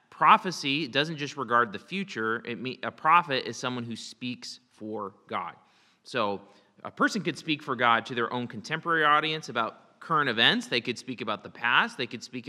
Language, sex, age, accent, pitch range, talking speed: English, male, 30-49, American, 110-135 Hz, 185 wpm